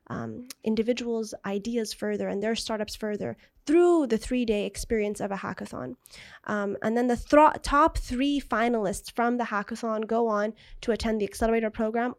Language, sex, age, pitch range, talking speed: English, female, 20-39, 215-240 Hz, 160 wpm